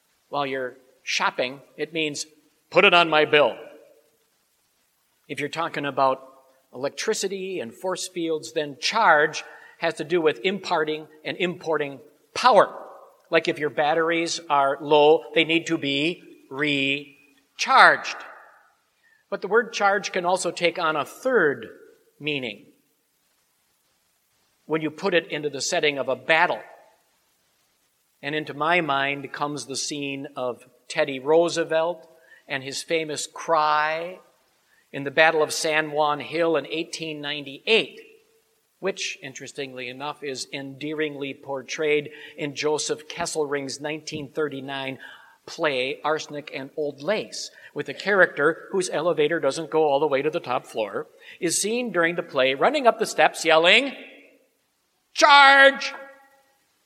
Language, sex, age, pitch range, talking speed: English, male, 50-69, 145-180 Hz, 130 wpm